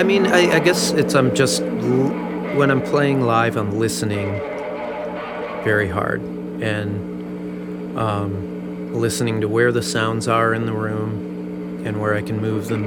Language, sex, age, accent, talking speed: English, male, 30-49, American, 155 wpm